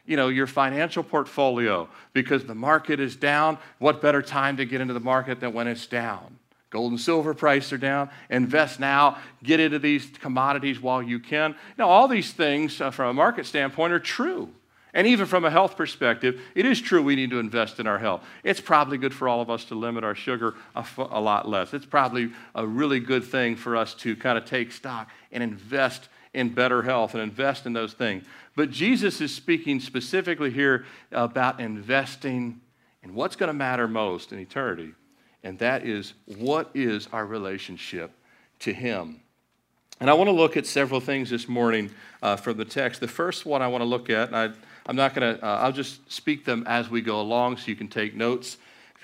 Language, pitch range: English, 120-145 Hz